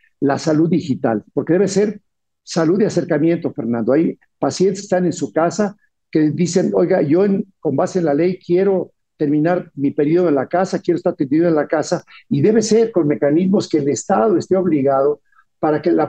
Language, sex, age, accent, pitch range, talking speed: Spanish, male, 50-69, Mexican, 150-195 Hz, 200 wpm